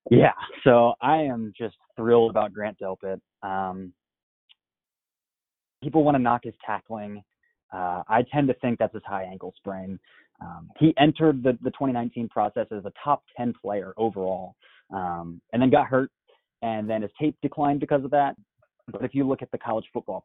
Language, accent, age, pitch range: English, American, 20-39, 100-125 Hz